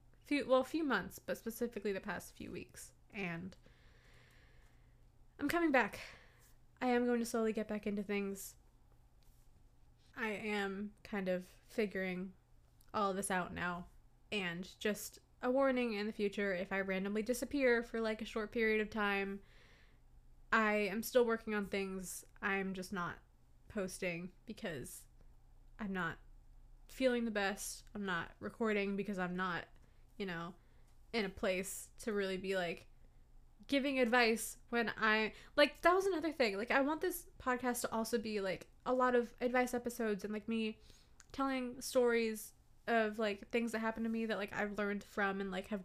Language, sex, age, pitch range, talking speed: English, female, 20-39, 195-235 Hz, 165 wpm